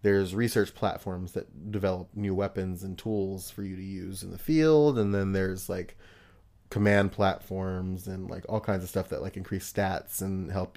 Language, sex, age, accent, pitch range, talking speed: English, male, 30-49, American, 95-110 Hz, 190 wpm